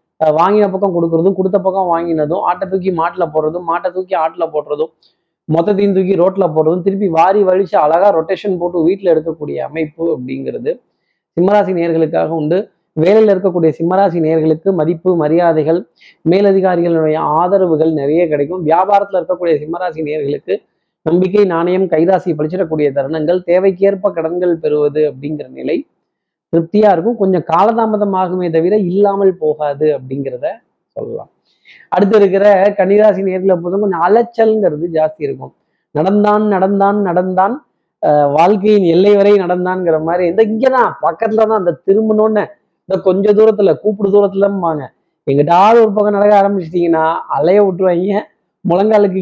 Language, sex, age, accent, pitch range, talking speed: Tamil, male, 30-49, native, 160-200 Hz, 105 wpm